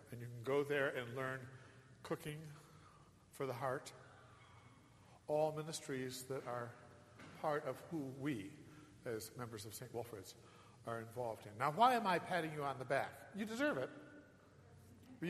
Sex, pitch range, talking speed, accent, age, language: male, 115-160 Hz, 155 wpm, American, 50-69, English